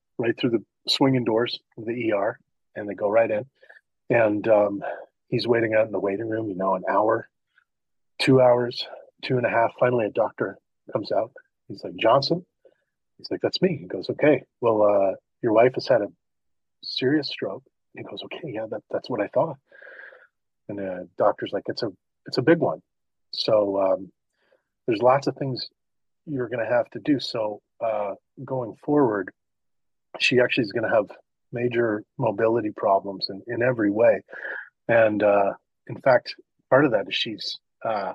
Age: 40-59